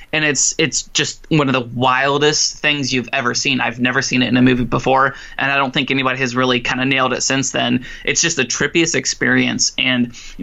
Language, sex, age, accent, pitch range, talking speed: English, male, 20-39, American, 125-145 Hz, 230 wpm